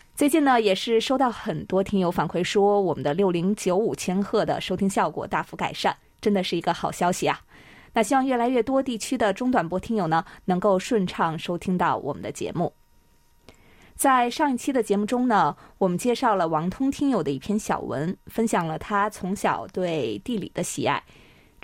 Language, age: Chinese, 20-39